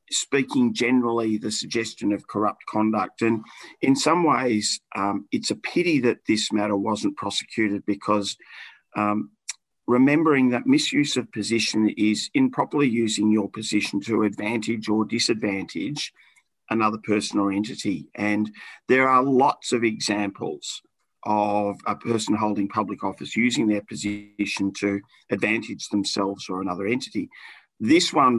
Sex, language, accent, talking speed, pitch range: male, English, Australian, 135 wpm, 105-115 Hz